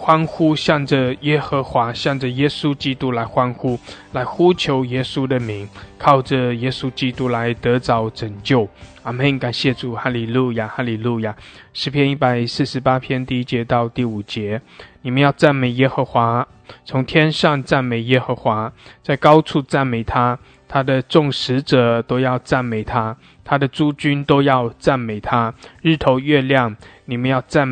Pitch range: 120-140 Hz